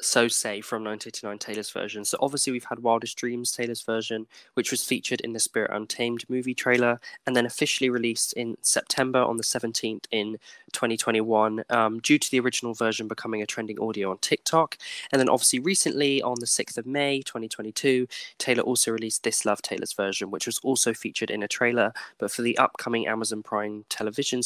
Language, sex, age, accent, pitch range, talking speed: English, male, 10-29, British, 115-140 Hz, 190 wpm